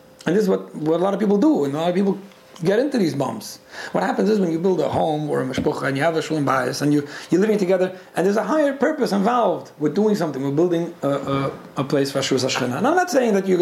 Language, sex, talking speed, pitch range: English, male, 285 wpm, 145-180 Hz